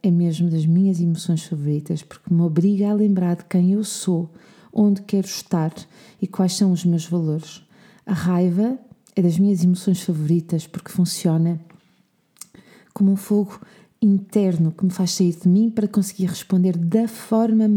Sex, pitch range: female, 170-205 Hz